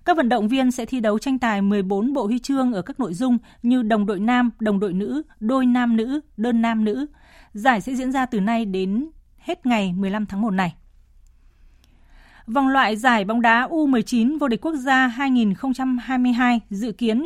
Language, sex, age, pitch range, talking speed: Vietnamese, female, 20-39, 205-260 Hz, 195 wpm